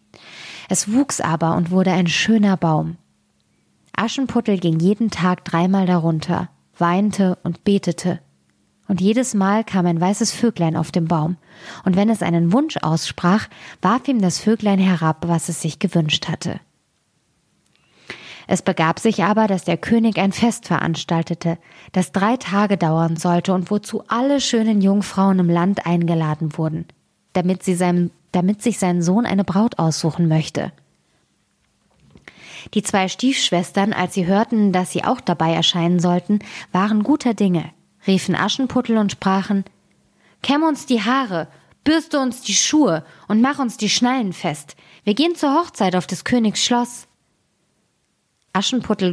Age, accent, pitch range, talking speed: 20-39, German, 170-220 Hz, 145 wpm